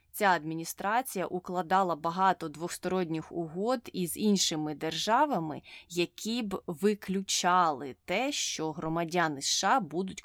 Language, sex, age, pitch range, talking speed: Ukrainian, female, 20-39, 160-200 Hz, 100 wpm